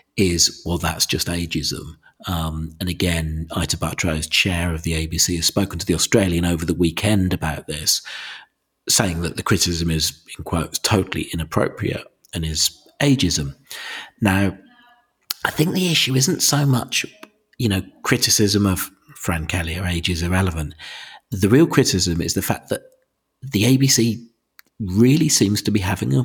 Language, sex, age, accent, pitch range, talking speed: English, male, 40-59, British, 85-105 Hz, 160 wpm